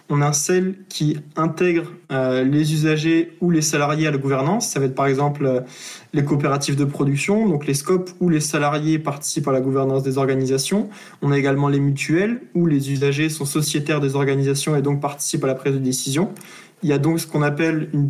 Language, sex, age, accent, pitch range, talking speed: French, male, 20-39, French, 140-170 Hz, 210 wpm